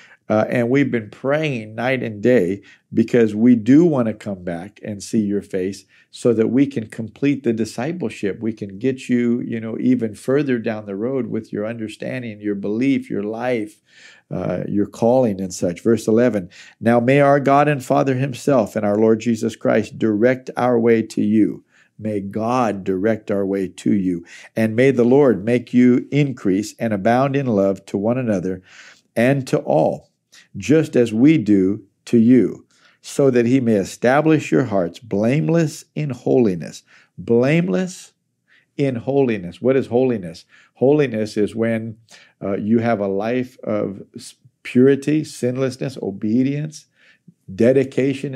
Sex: male